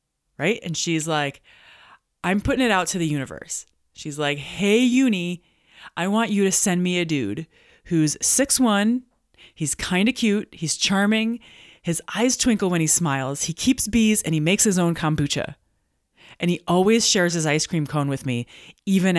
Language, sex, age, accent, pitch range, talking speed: English, female, 30-49, American, 140-210 Hz, 180 wpm